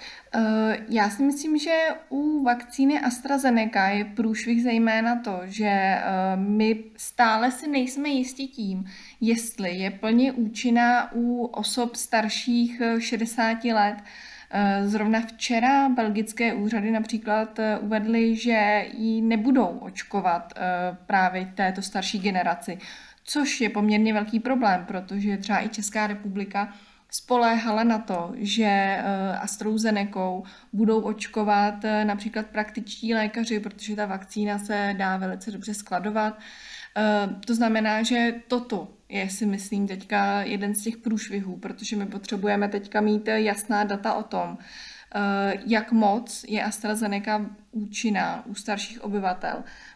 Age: 20-39